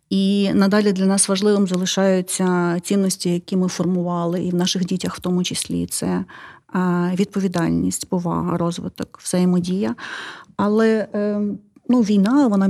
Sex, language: female, Ukrainian